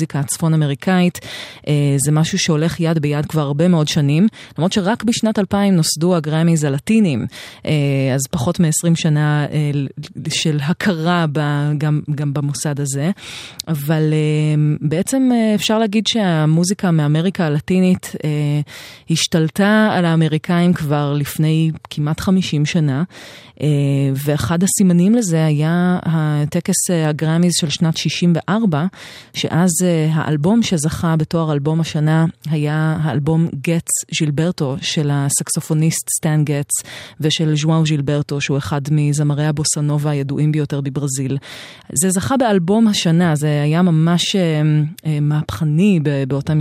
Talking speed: 110 wpm